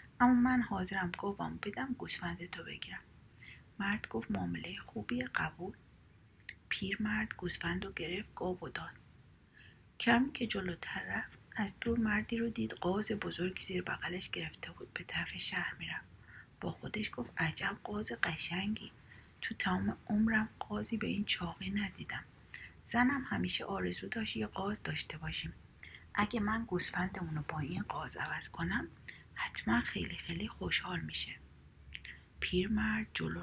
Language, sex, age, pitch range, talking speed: Persian, female, 30-49, 170-215 Hz, 140 wpm